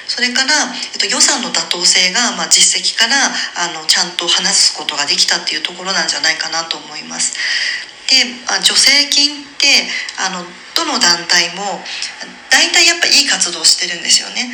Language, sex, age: Japanese, female, 40-59